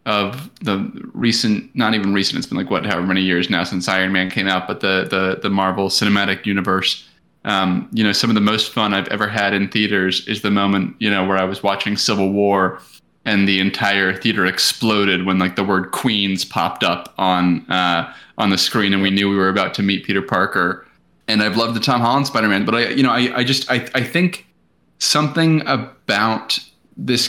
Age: 20-39